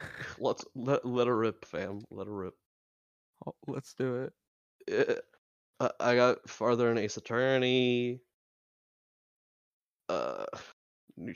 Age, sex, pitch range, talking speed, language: 20-39, male, 115-150 Hz, 125 wpm, English